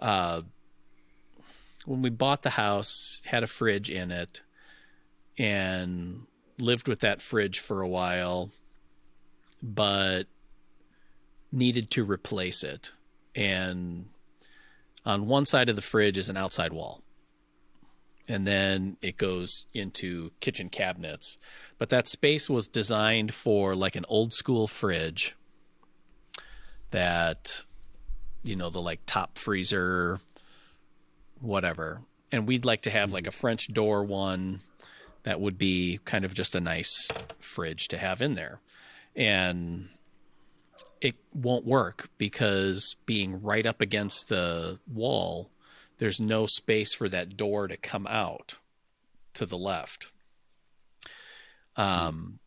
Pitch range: 85-110 Hz